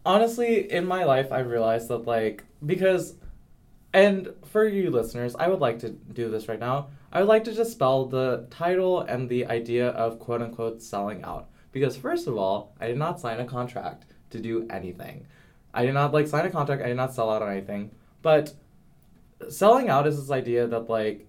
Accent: American